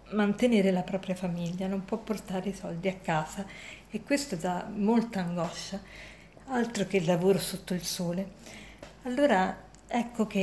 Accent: native